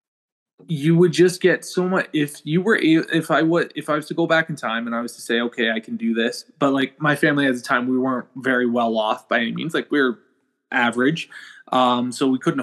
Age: 20-39